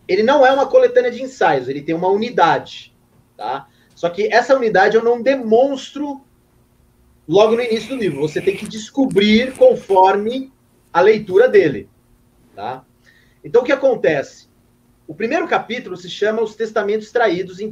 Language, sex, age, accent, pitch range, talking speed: Portuguese, male, 30-49, Brazilian, 180-260 Hz, 155 wpm